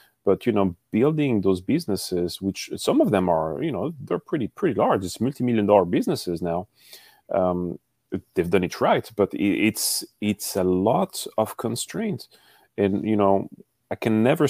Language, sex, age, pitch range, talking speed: English, male, 30-49, 95-135 Hz, 165 wpm